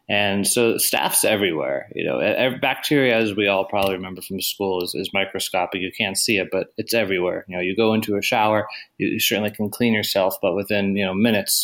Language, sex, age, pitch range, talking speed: English, male, 20-39, 95-110 Hz, 215 wpm